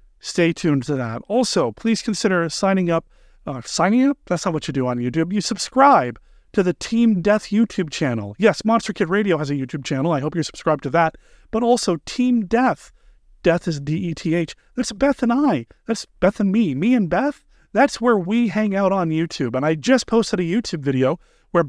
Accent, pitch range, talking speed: American, 150-215 Hz, 205 wpm